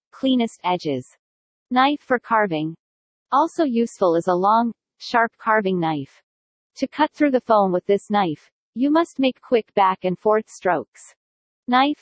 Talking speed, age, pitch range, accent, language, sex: 150 wpm, 40-59, 190-255 Hz, American, English, female